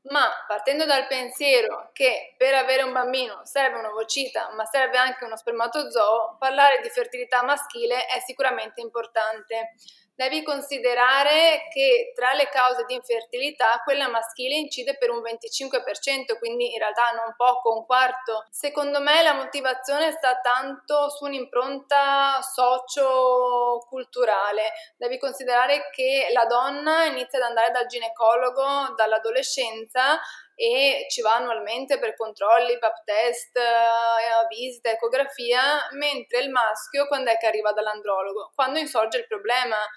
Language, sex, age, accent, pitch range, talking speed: Italian, female, 20-39, native, 225-275 Hz, 130 wpm